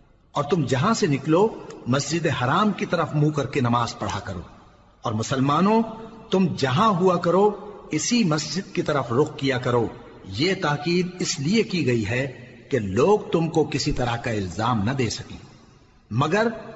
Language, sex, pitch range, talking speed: Urdu, male, 120-170 Hz, 170 wpm